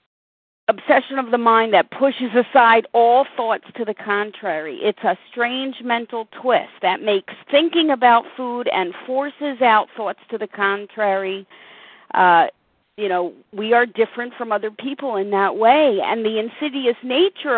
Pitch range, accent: 230-285 Hz, American